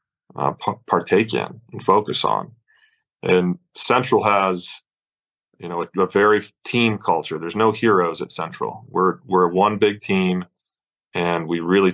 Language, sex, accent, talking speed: English, male, American, 150 wpm